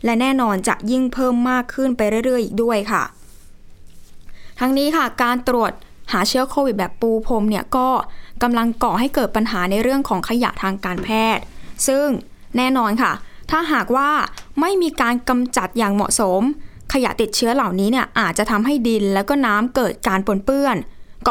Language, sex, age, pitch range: Thai, female, 20-39, 210-255 Hz